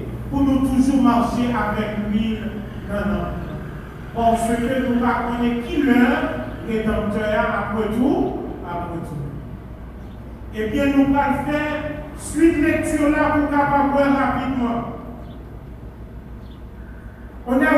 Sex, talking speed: male, 120 wpm